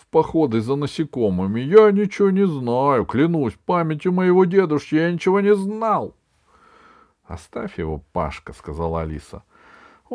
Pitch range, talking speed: 85-140 Hz, 135 wpm